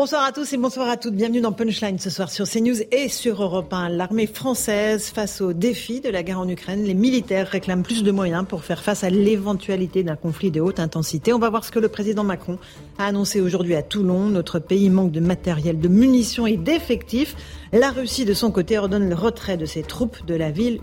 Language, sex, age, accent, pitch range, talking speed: French, female, 40-59, French, 185-240 Hz, 230 wpm